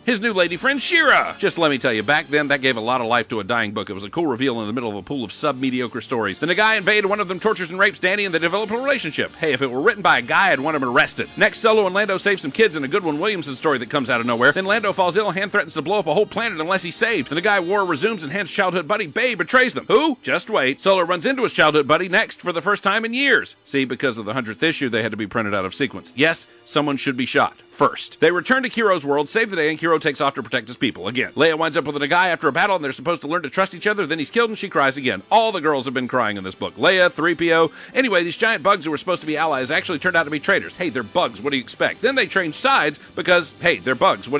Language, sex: English, male